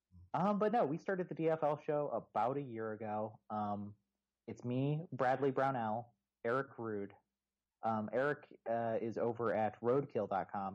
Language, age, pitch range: English, 30-49, 100-135 Hz